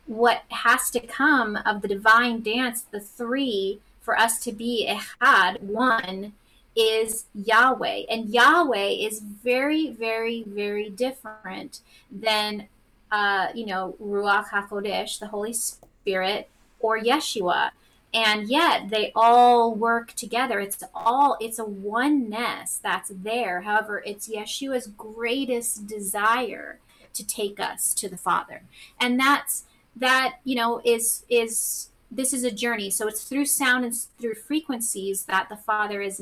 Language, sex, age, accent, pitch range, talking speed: English, female, 30-49, American, 210-255 Hz, 140 wpm